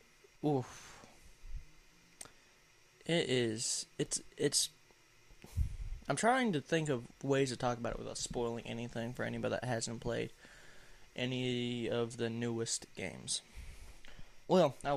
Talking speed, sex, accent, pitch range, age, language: 120 wpm, male, American, 115-135 Hz, 20-39, English